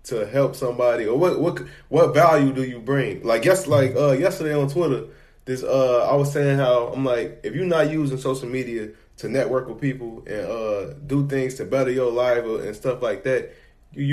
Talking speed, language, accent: 210 wpm, English, American